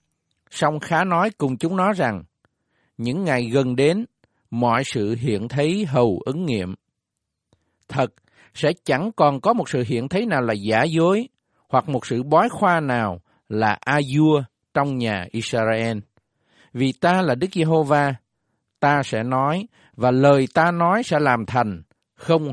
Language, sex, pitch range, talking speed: Vietnamese, male, 115-150 Hz, 155 wpm